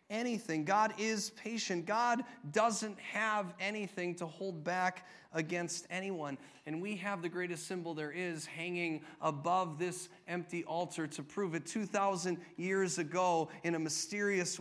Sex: male